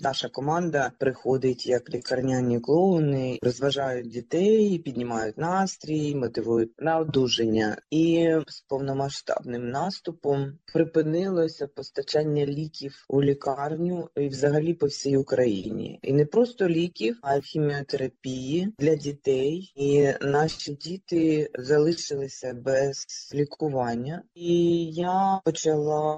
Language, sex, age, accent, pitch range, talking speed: Ukrainian, female, 20-39, native, 135-165 Hz, 105 wpm